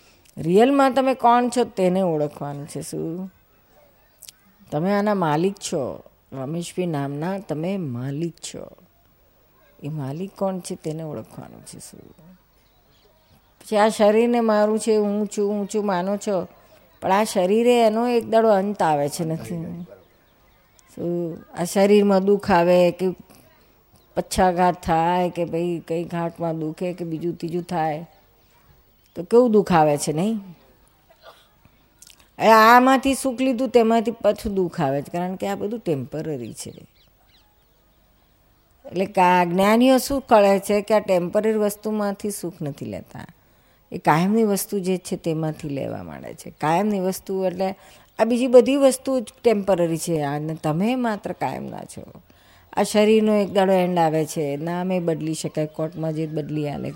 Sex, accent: female, native